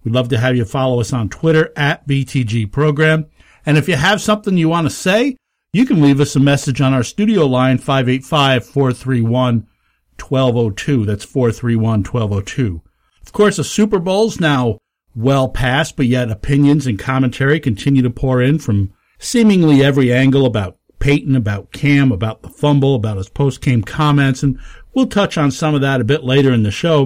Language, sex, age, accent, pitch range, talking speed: English, male, 50-69, American, 120-155 Hz, 175 wpm